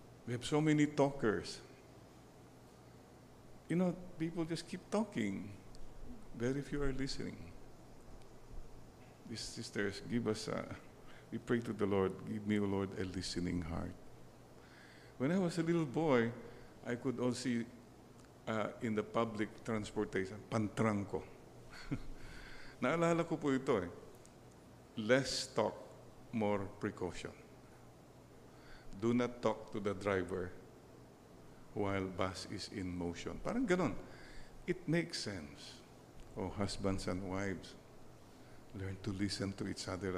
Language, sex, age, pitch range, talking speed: English, male, 50-69, 95-125 Hz, 120 wpm